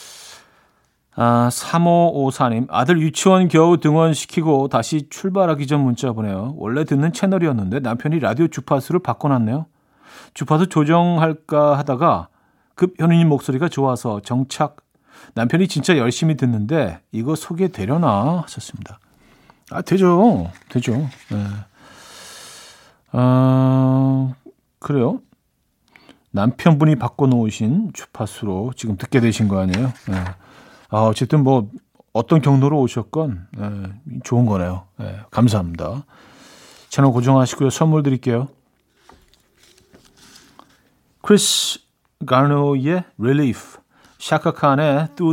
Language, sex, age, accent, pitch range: Korean, male, 40-59, native, 115-160 Hz